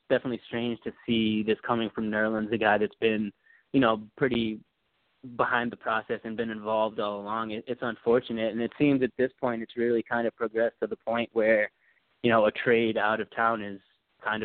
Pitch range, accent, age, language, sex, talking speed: 105-115 Hz, American, 20-39, English, male, 210 wpm